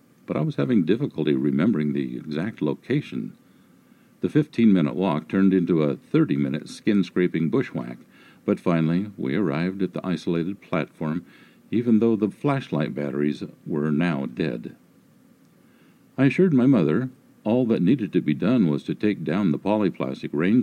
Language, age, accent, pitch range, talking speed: English, 50-69, American, 80-105 Hz, 150 wpm